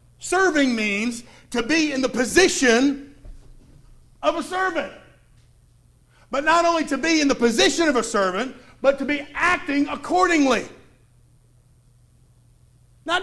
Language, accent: English, American